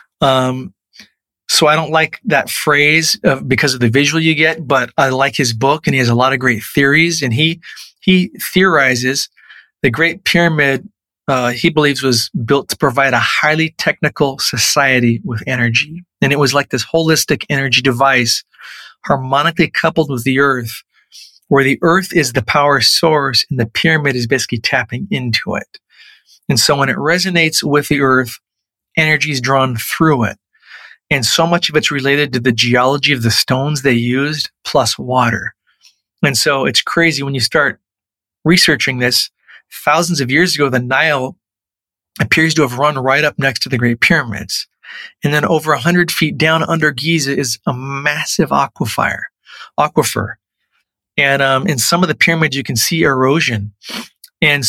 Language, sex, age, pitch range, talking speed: English, male, 40-59, 130-160 Hz, 170 wpm